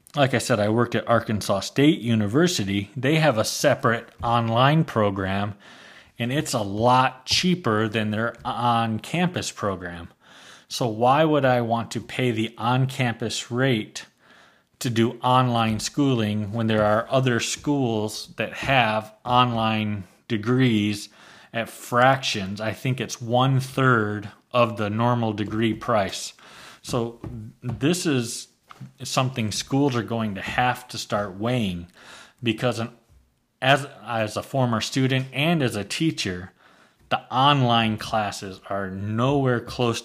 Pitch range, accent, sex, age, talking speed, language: 110-125 Hz, American, male, 30-49, 130 wpm, English